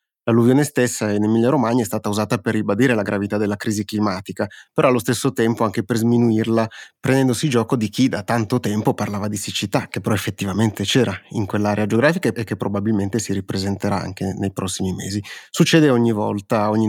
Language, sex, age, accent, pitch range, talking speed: Italian, male, 30-49, native, 105-120 Hz, 185 wpm